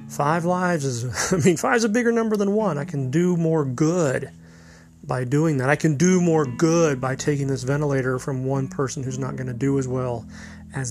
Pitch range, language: 130-165 Hz, English